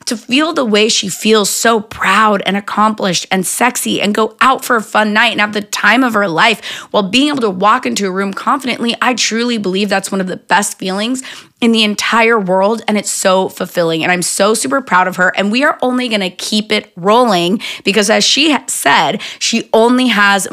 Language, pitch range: English, 190-245 Hz